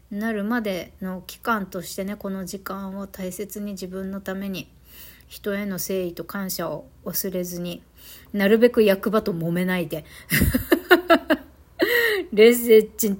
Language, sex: Japanese, female